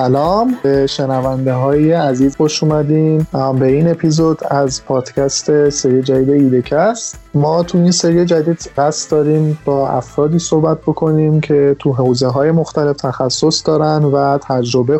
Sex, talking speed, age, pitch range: male, 135 wpm, 20-39, 135-160 Hz